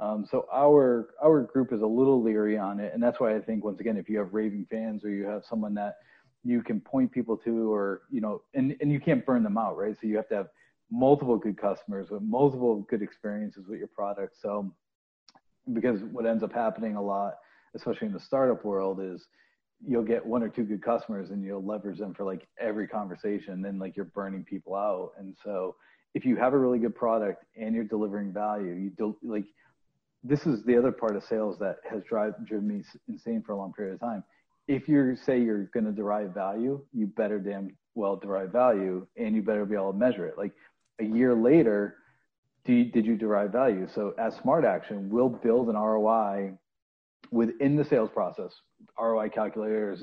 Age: 40-59